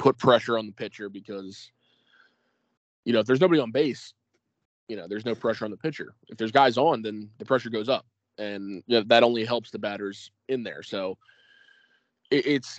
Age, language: 20-39, English